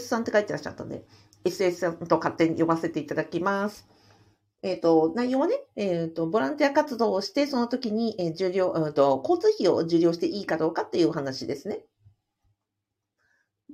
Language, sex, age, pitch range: Japanese, female, 50-69, 160-245 Hz